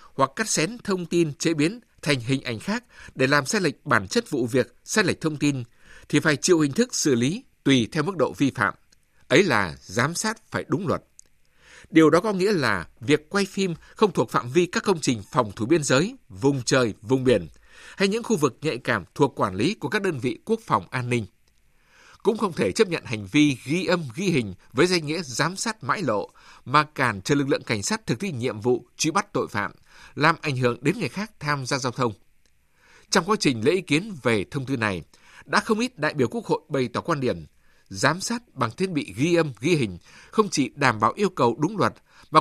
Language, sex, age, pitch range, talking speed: Vietnamese, male, 60-79, 125-185 Hz, 235 wpm